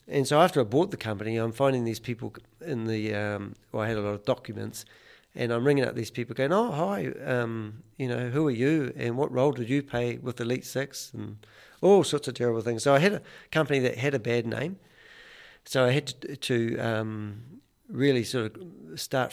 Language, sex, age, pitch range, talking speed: English, male, 50-69, 115-130 Hz, 215 wpm